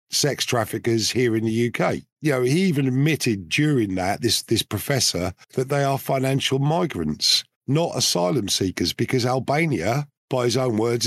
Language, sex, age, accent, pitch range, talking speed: English, male, 50-69, British, 120-150 Hz, 165 wpm